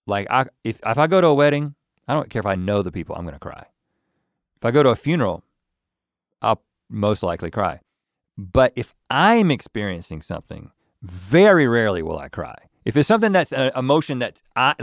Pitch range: 120-175 Hz